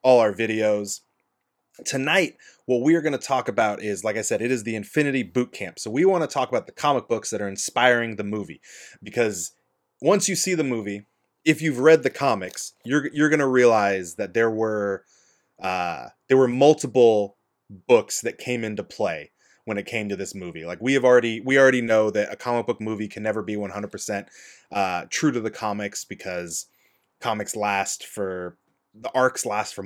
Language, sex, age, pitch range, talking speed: English, male, 20-39, 105-135 Hz, 195 wpm